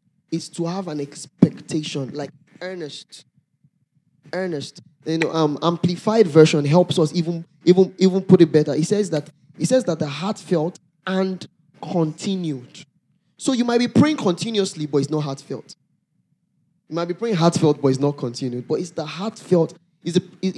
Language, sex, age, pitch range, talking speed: English, male, 20-39, 145-180 Hz, 165 wpm